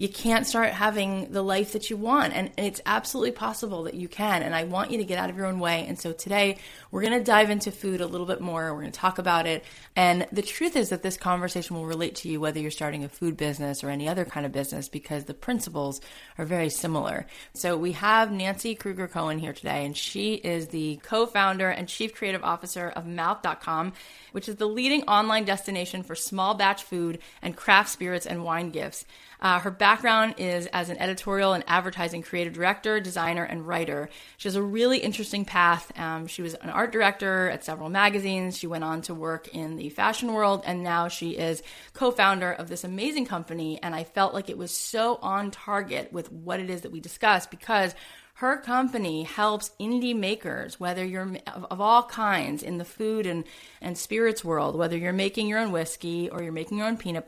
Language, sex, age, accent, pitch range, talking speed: English, female, 30-49, American, 165-210 Hz, 215 wpm